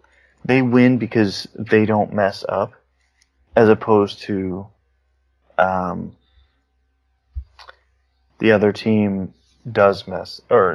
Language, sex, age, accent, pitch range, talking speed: English, male, 20-39, American, 85-110 Hz, 95 wpm